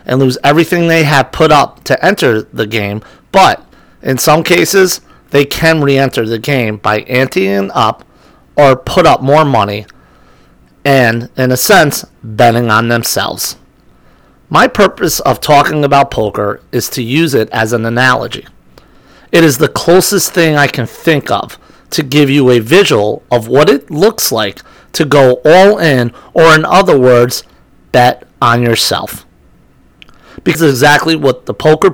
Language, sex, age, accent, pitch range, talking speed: English, male, 40-59, American, 115-150 Hz, 155 wpm